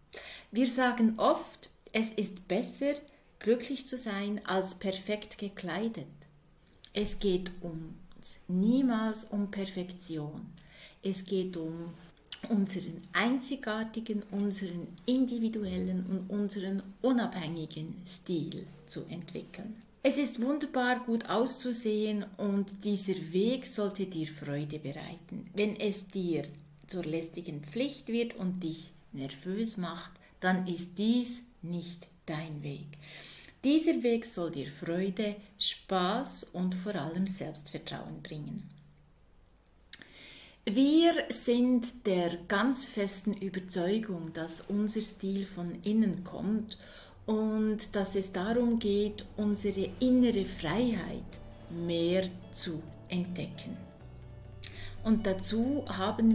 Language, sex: German, female